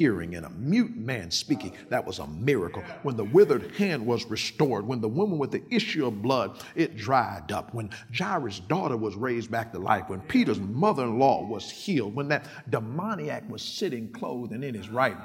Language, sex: English, male